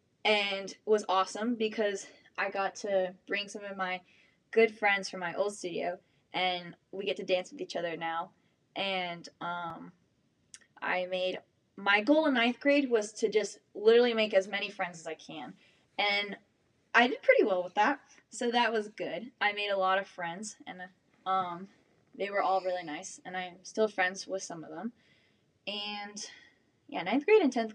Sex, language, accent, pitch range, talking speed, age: female, English, American, 180-220 Hz, 180 wpm, 10-29